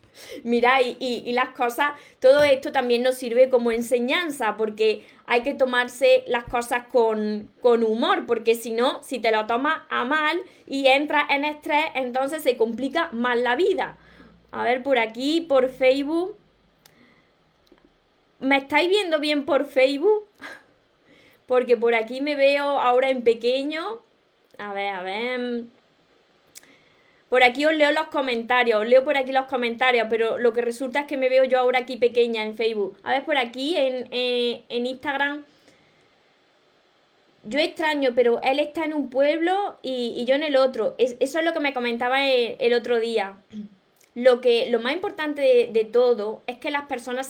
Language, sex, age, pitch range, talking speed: Spanish, female, 20-39, 240-290 Hz, 175 wpm